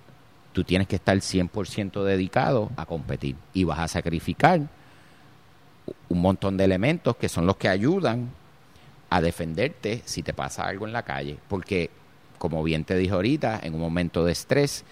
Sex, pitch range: male, 80-105 Hz